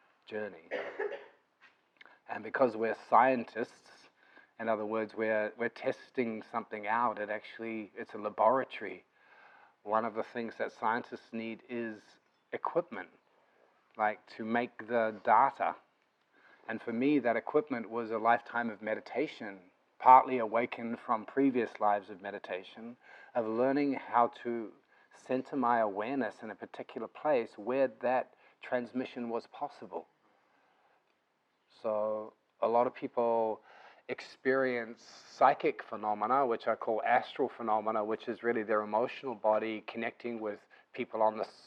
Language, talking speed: English, 130 wpm